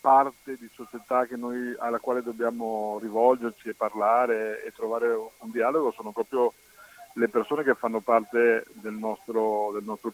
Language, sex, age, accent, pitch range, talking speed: Italian, male, 50-69, native, 110-140 Hz, 155 wpm